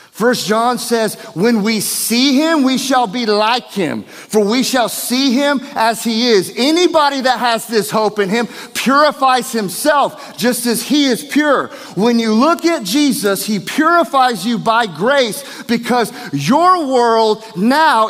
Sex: male